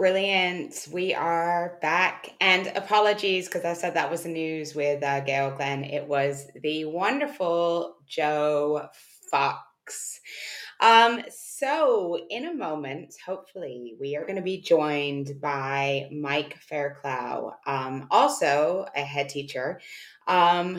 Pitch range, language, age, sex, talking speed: 145-190 Hz, English, 20-39, female, 125 wpm